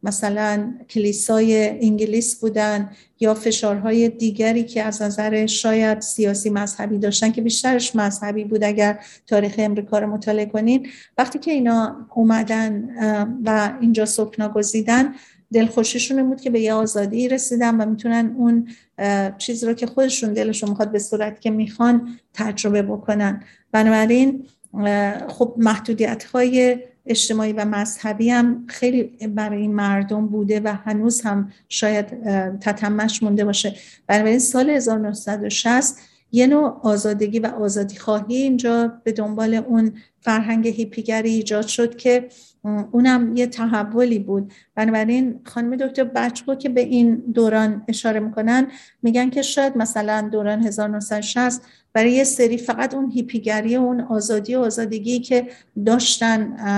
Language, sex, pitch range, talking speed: Persian, female, 210-240 Hz, 130 wpm